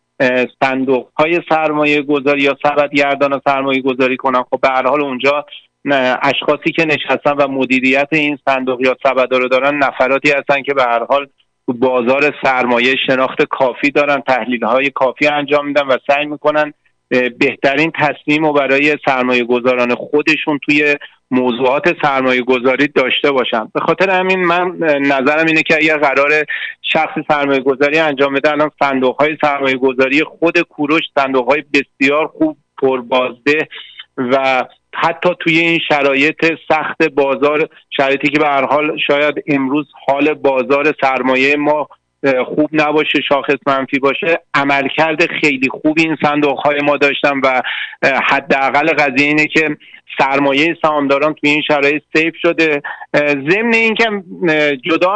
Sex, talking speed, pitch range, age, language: male, 135 wpm, 135-150 Hz, 40-59, Persian